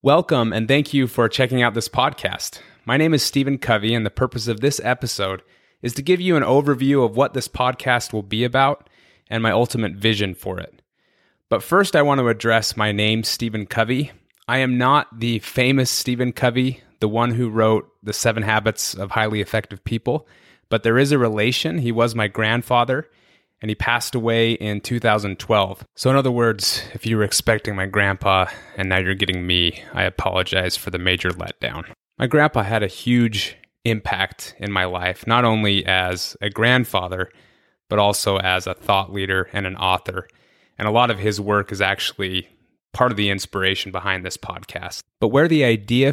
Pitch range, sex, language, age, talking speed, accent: 100-125 Hz, male, English, 30-49, 190 wpm, American